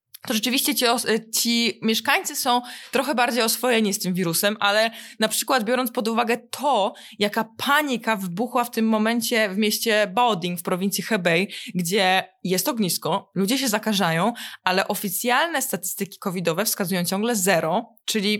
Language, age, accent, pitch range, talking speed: Polish, 20-39, native, 195-240 Hz, 145 wpm